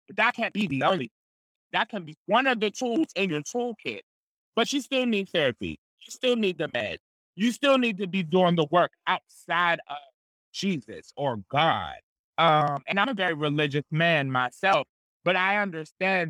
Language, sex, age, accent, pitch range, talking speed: English, male, 30-49, American, 145-195 Hz, 185 wpm